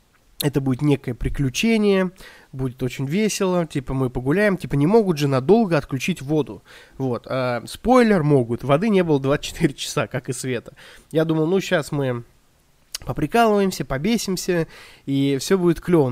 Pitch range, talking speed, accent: 130-185 Hz, 150 wpm, native